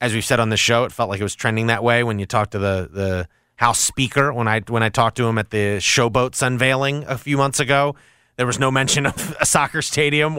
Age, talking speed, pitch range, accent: 30-49, 260 wpm, 115-140 Hz, American